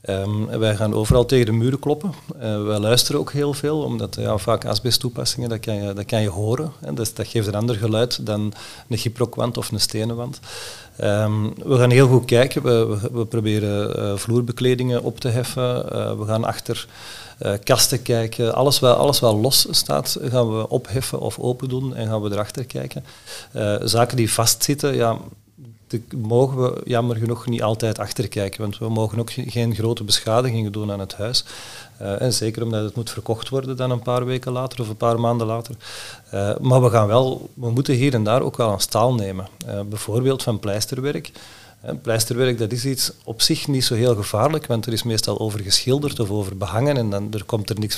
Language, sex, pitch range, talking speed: Dutch, male, 110-125 Hz, 195 wpm